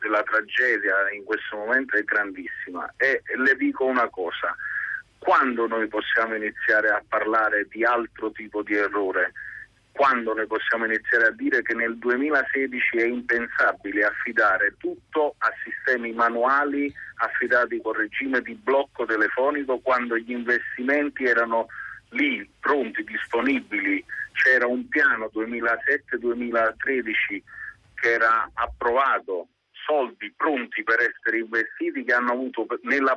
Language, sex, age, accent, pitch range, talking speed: Italian, male, 50-69, native, 115-175 Hz, 120 wpm